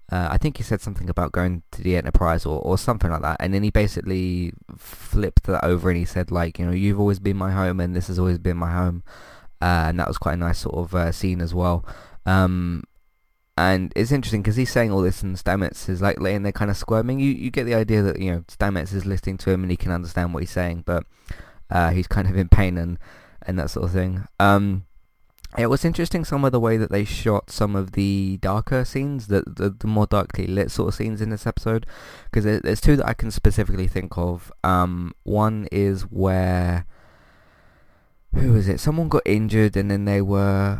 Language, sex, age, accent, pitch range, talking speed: English, male, 20-39, British, 90-105 Hz, 230 wpm